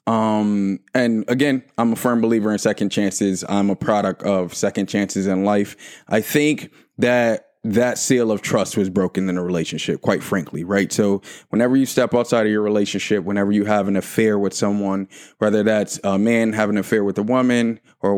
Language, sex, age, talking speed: English, male, 20-39, 200 wpm